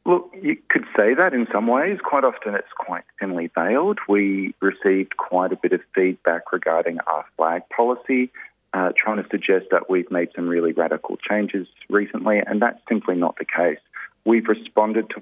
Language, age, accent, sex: English, 30-49, Australian, male